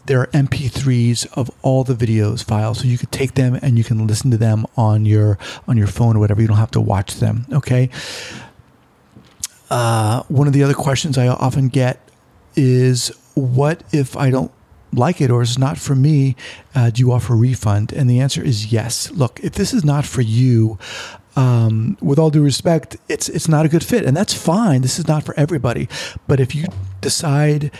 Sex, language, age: male, English, 40-59